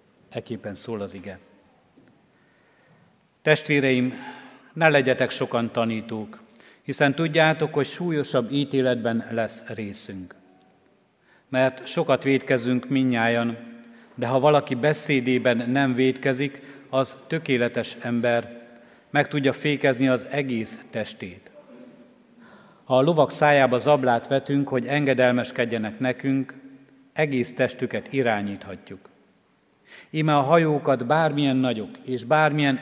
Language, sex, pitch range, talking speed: Hungarian, male, 120-140 Hz, 100 wpm